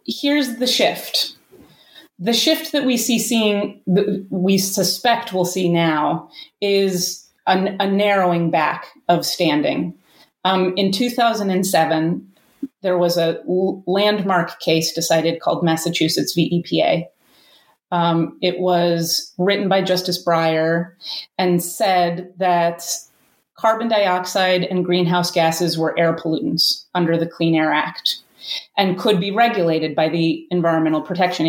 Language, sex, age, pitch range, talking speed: English, female, 30-49, 170-205 Hz, 125 wpm